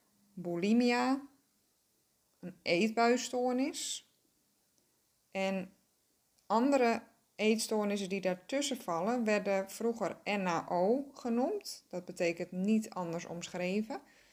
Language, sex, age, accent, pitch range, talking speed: Dutch, female, 20-39, Dutch, 185-220 Hz, 75 wpm